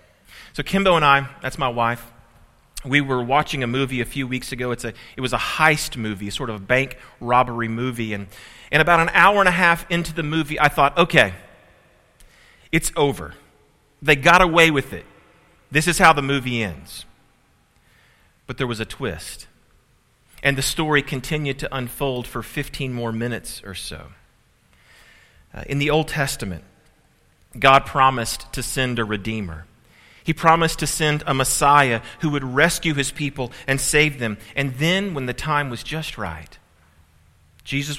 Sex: male